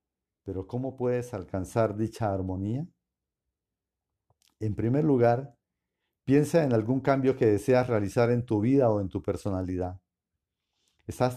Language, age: Spanish, 50-69